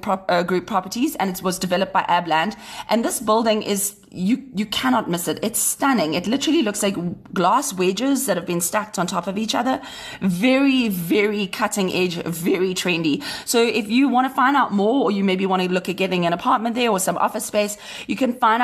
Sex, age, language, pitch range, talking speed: female, 30-49, English, 185-225 Hz, 215 wpm